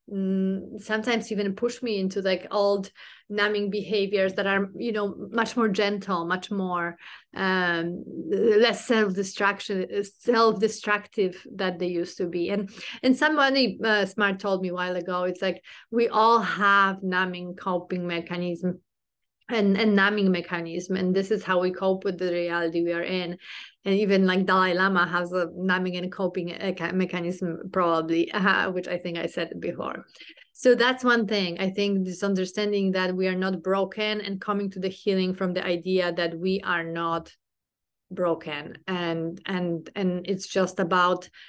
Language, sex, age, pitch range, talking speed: English, female, 30-49, 180-200 Hz, 160 wpm